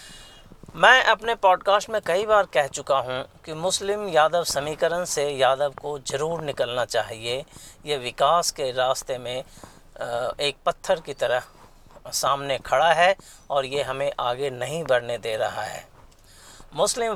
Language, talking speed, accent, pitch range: Hindi, 145 wpm, native, 140-185 Hz